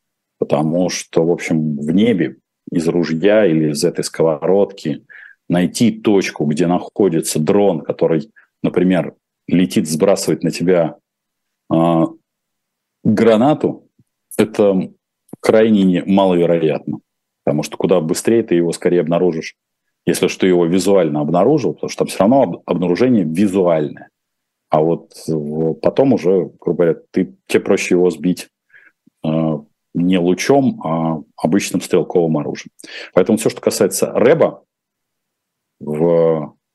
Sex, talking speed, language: male, 120 wpm, Russian